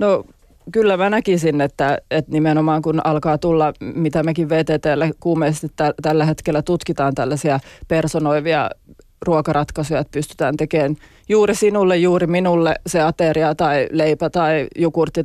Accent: native